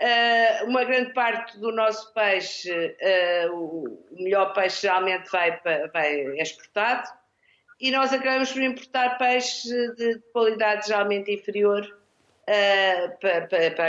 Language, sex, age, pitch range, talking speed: Portuguese, female, 50-69, 190-240 Hz, 105 wpm